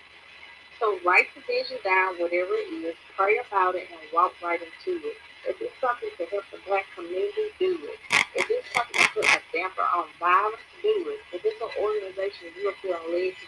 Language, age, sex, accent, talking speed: English, 40-59, female, American, 200 wpm